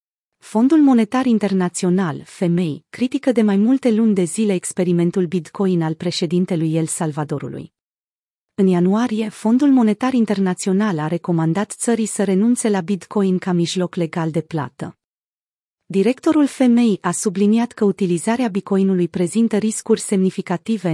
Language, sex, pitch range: Romanian, female, 175-220 Hz